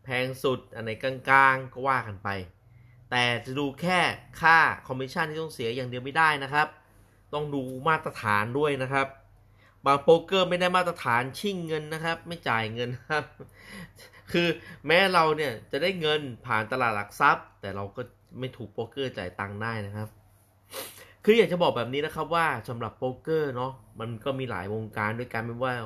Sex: male